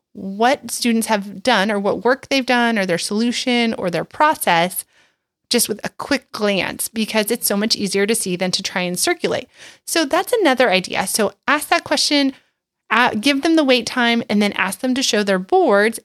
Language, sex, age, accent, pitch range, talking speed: English, female, 30-49, American, 205-280 Hz, 200 wpm